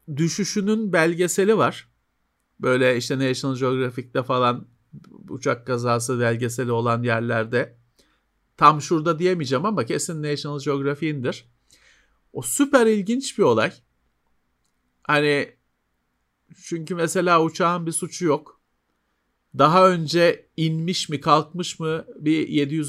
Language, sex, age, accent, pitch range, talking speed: Turkish, male, 50-69, native, 120-165 Hz, 100 wpm